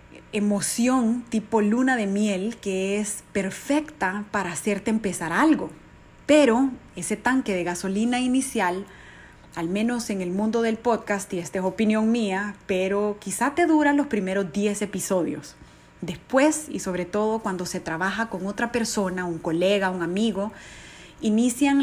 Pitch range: 185-230 Hz